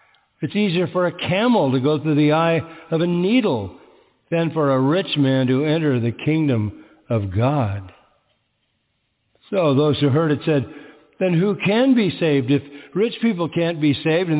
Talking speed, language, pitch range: 175 wpm, English, 125-165 Hz